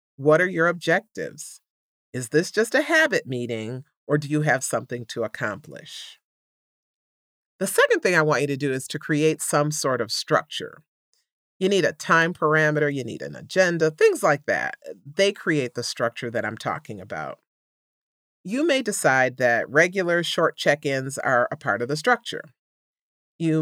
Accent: American